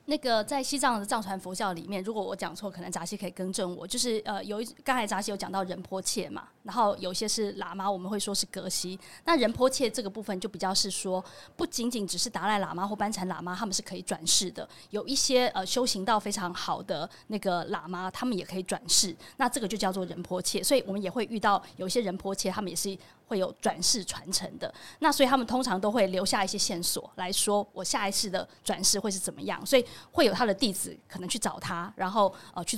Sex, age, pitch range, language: female, 20-39, 185-240 Hz, Chinese